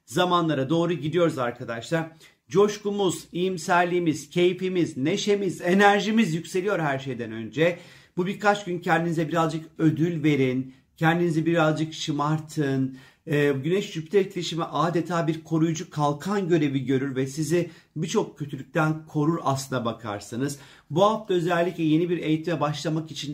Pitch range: 145-170 Hz